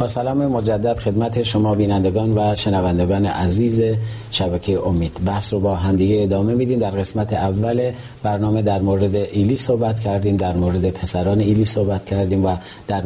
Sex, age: male, 40-59